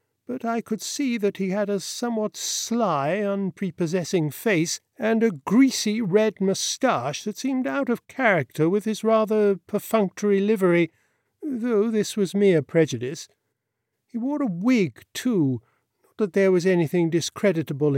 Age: 50-69